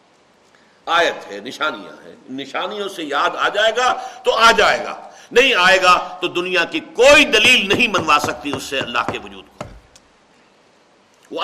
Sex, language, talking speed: male, Urdu, 170 wpm